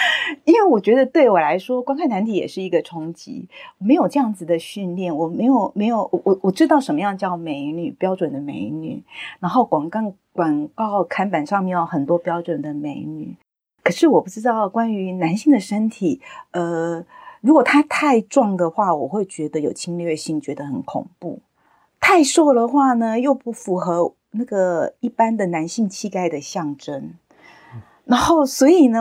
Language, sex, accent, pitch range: Chinese, female, native, 175-255 Hz